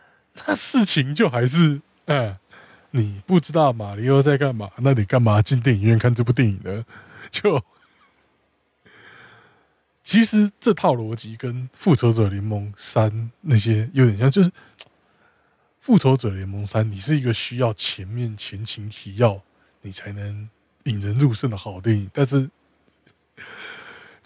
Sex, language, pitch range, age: male, Chinese, 105-135 Hz, 20-39